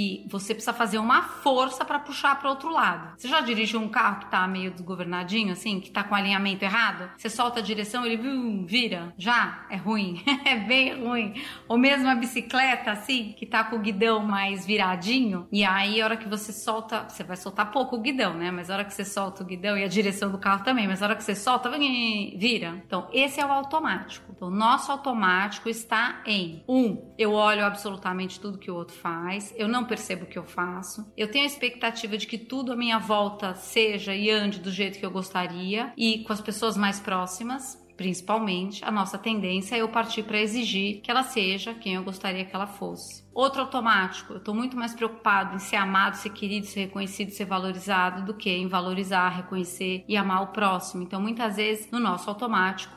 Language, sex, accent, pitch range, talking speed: Portuguese, female, Brazilian, 195-235 Hz, 205 wpm